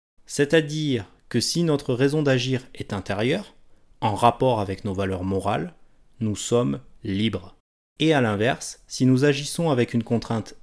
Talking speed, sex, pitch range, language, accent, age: 145 wpm, male, 105-140 Hz, French, French, 30-49